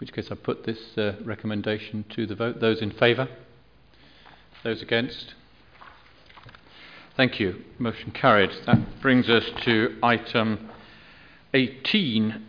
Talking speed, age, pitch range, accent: 125 wpm, 50-69, 105-120 Hz, British